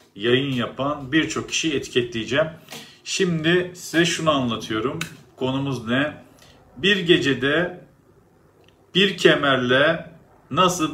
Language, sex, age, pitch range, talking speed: Turkish, male, 40-59, 120-155 Hz, 90 wpm